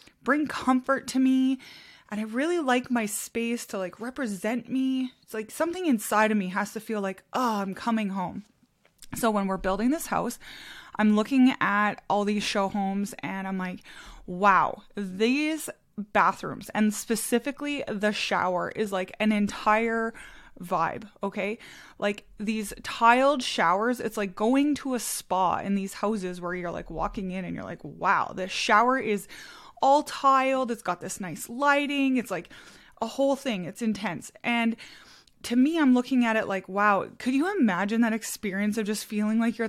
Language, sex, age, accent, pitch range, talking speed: English, female, 20-39, American, 200-255 Hz, 175 wpm